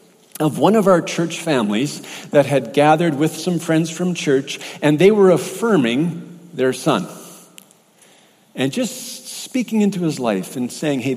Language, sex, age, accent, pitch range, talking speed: English, male, 50-69, American, 150-200 Hz, 155 wpm